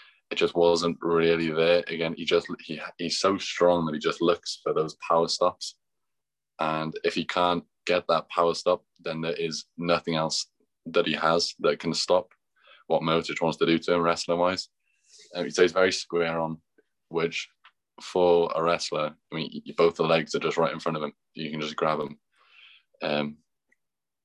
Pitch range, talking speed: 80-85 Hz, 190 wpm